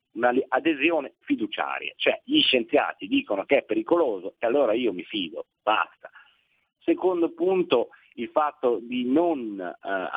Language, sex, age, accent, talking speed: Italian, male, 40-59, native, 135 wpm